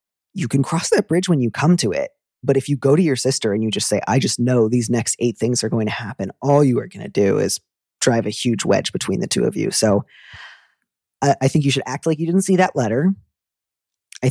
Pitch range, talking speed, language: 120-150 Hz, 260 wpm, English